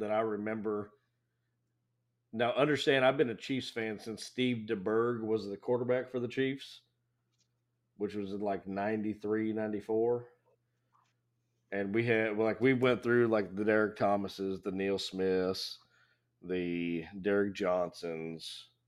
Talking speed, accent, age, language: 135 wpm, American, 40-59, English